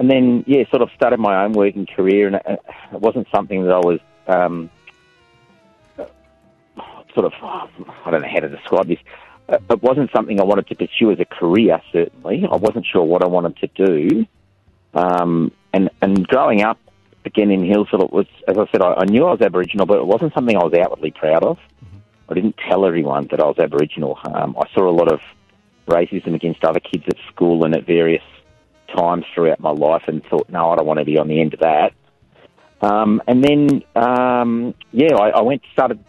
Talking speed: 205 wpm